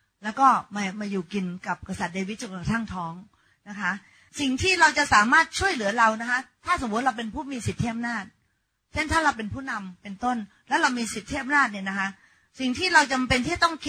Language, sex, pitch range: Thai, female, 200-260 Hz